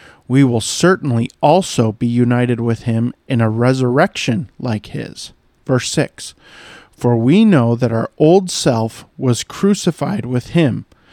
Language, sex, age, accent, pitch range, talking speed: English, male, 40-59, American, 115-140 Hz, 140 wpm